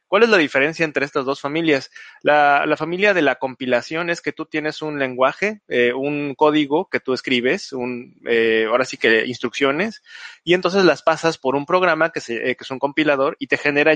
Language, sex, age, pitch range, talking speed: Spanish, male, 30-49, 140-180 Hz, 210 wpm